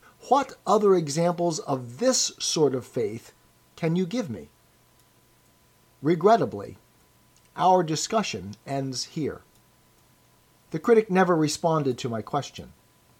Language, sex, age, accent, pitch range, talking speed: English, male, 50-69, American, 130-185 Hz, 110 wpm